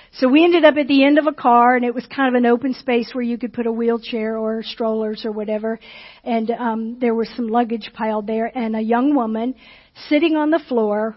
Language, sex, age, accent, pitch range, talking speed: English, female, 50-69, American, 230-275 Hz, 235 wpm